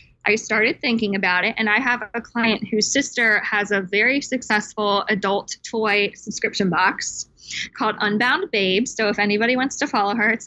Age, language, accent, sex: 20-39, English, American, female